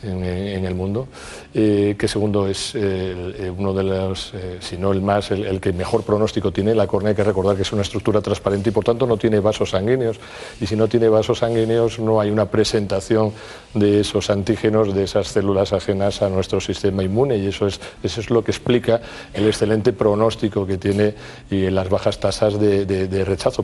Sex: male